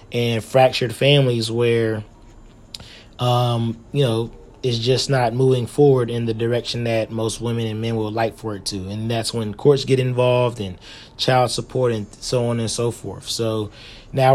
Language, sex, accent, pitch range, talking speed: English, male, American, 110-125 Hz, 175 wpm